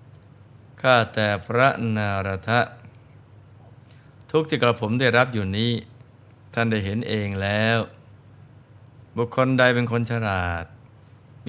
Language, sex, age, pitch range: Thai, male, 20-39, 105-125 Hz